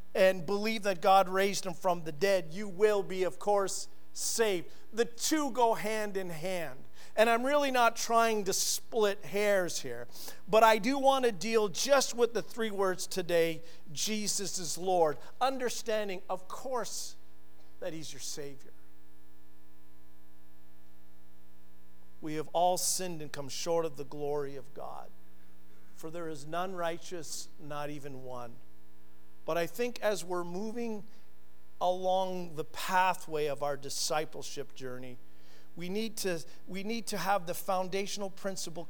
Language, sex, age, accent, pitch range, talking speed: English, male, 50-69, American, 125-195 Hz, 145 wpm